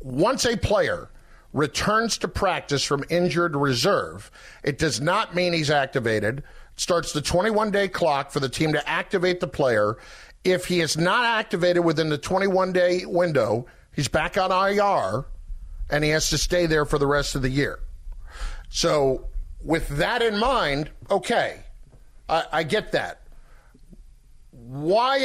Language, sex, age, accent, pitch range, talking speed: English, male, 50-69, American, 145-195 Hz, 155 wpm